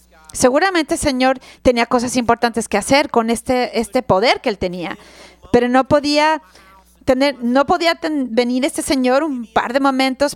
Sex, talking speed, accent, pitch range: female, 170 wpm, Mexican, 200-265 Hz